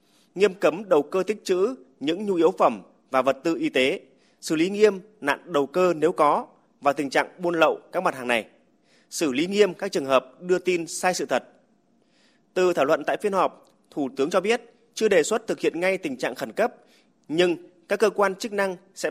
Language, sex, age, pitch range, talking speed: Vietnamese, male, 20-39, 150-205 Hz, 220 wpm